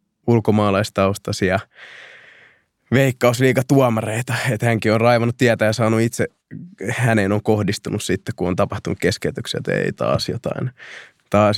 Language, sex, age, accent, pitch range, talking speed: Finnish, male, 20-39, native, 95-115 Hz, 120 wpm